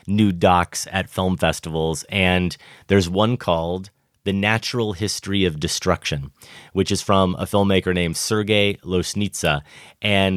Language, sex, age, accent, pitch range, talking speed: English, male, 30-49, American, 90-105 Hz, 135 wpm